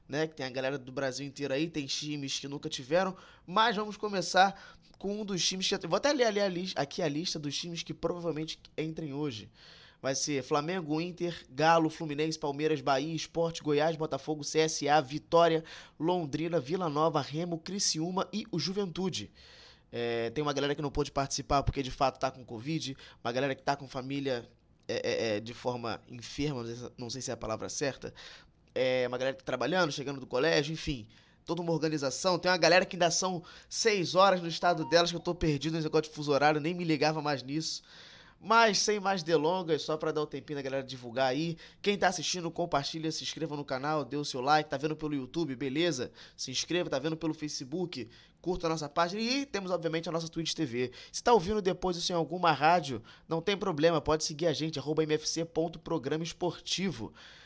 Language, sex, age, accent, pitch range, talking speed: Portuguese, male, 20-39, Brazilian, 140-175 Hz, 195 wpm